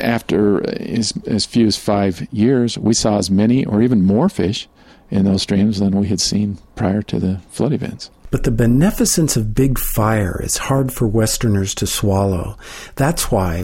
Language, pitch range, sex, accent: English, 100-125 Hz, male, American